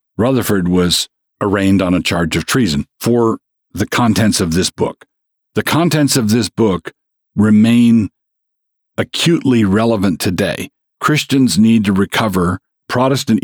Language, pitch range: English, 95-120 Hz